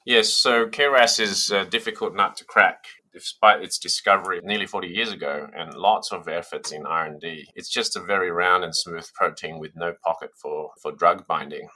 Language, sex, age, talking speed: English, male, 30-49, 195 wpm